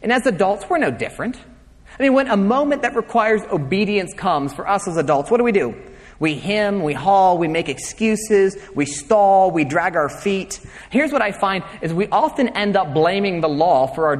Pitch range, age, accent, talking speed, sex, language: 150-225 Hz, 30-49, American, 210 wpm, male, English